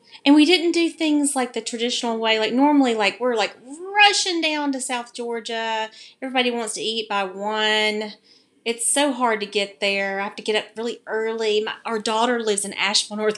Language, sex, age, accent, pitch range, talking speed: English, female, 30-49, American, 200-265 Hz, 200 wpm